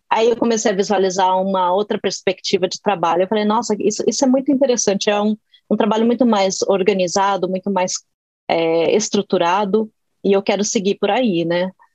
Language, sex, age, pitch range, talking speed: Portuguese, female, 30-49, 195-240 Hz, 180 wpm